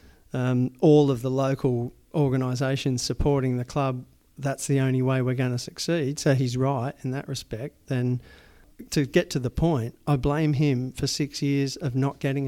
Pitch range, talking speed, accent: 130-150 Hz, 185 wpm, Australian